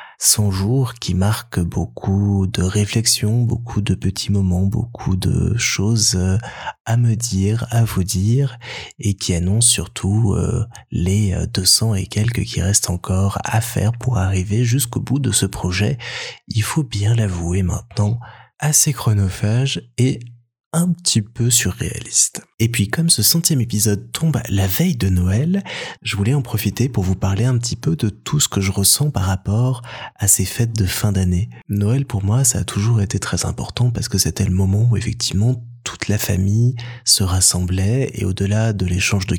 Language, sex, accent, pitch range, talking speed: French, male, French, 95-120 Hz, 170 wpm